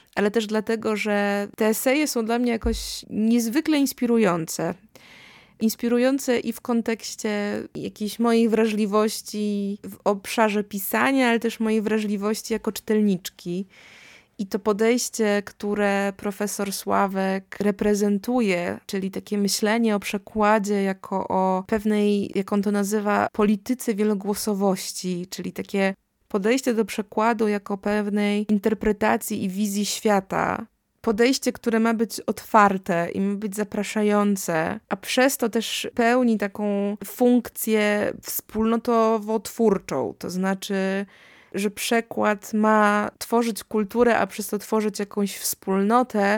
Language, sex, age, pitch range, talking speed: Polish, female, 20-39, 195-225 Hz, 115 wpm